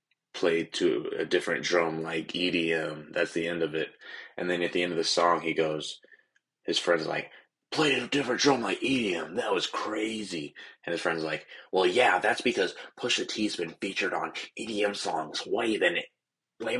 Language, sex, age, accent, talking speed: English, male, 20-39, American, 180 wpm